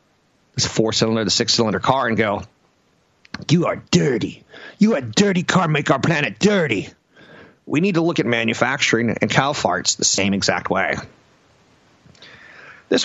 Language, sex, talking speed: English, male, 150 wpm